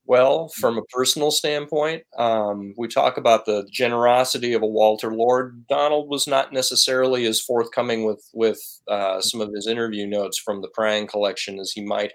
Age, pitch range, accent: 30-49, 105-135 Hz, American